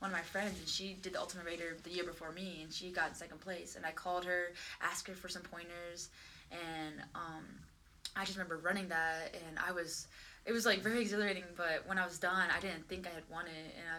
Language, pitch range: English, 170-190 Hz